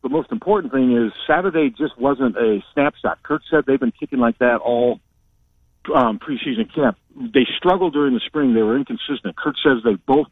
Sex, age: male, 50-69